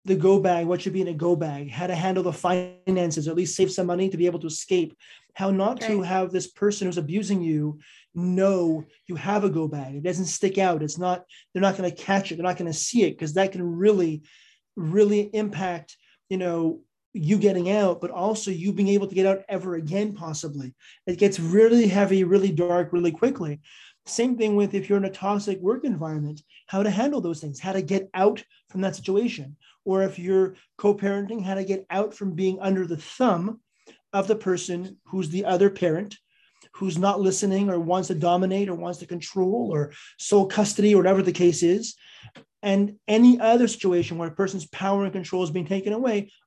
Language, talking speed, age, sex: English, 205 wpm, 30-49, male